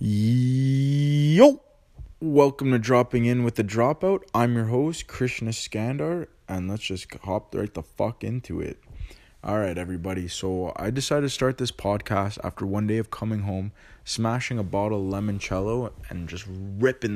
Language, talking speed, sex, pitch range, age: English, 160 wpm, male, 95-120 Hz, 20-39